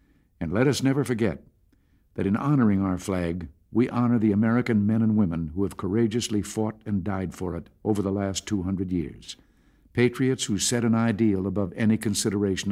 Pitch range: 95-115 Hz